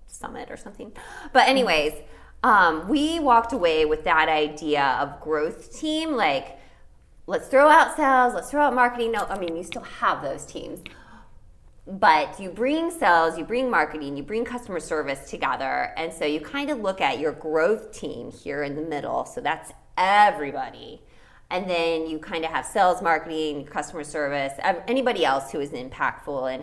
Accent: American